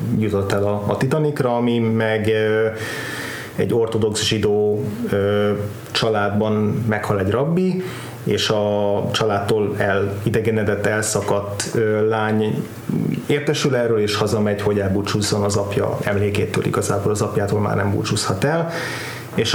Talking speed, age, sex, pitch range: 110 wpm, 30-49, male, 100-115 Hz